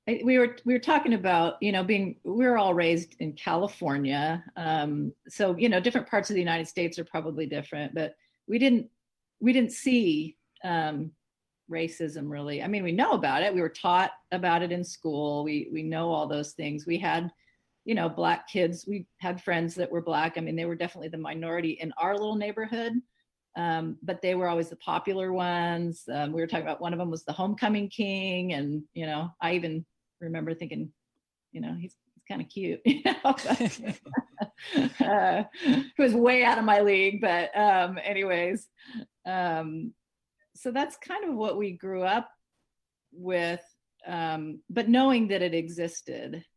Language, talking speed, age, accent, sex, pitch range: English, 185 wpm, 40-59, American, female, 165-210 Hz